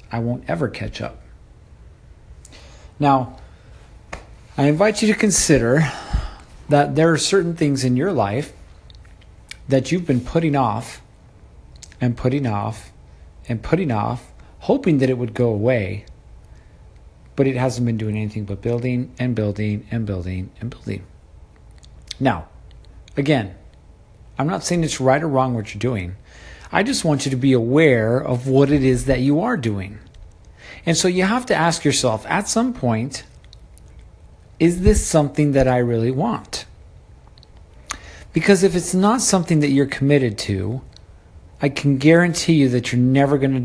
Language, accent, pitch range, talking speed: English, American, 105-145 Hz, 155 wpm